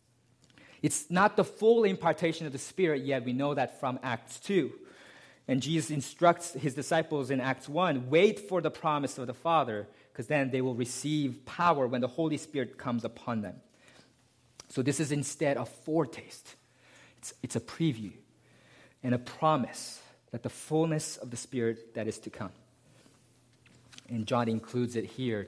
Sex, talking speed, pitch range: male, 165 wpm, 120-170 Hz